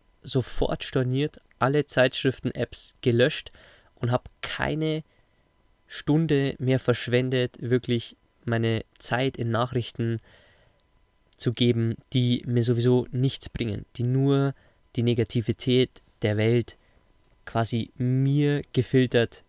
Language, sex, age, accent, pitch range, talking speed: German, male, 20-39, German, 115-130 Hz, 100 wpm